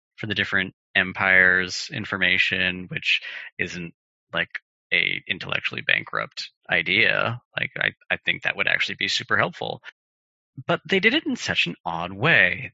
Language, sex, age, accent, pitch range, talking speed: English, male, 30-49, American, 95-130 Hz, 145 wpm